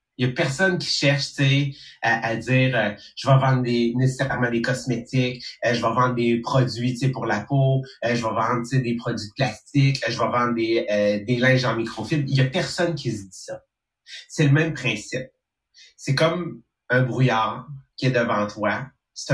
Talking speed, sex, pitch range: 200 wpm, male, 120-145 Hz